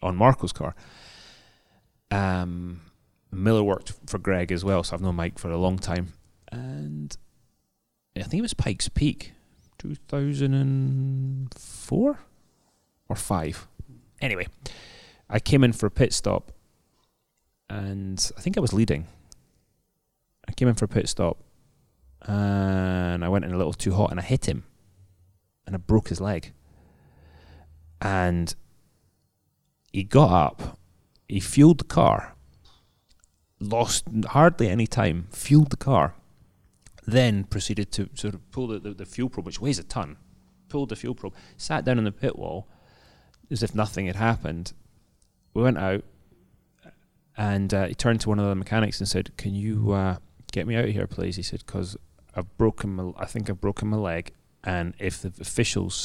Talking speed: 160 wpm